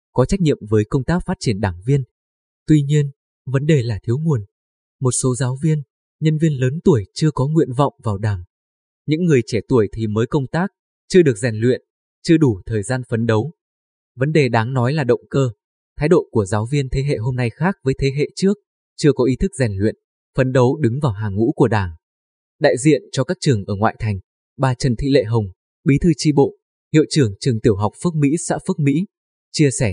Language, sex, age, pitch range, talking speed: Vietnamese, male, 20-39, 115-150 Hz, 225 wpm